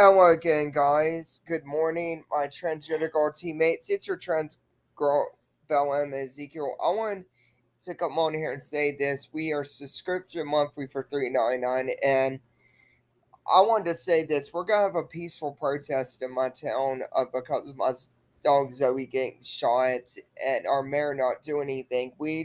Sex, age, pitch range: male, 20-39, 140-165 Hz